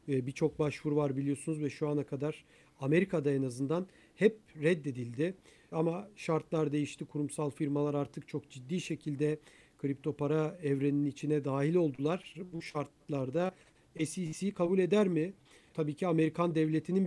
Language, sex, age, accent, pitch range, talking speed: Turkish, male, 50-69, native, 145-175 Hz, 135 wpm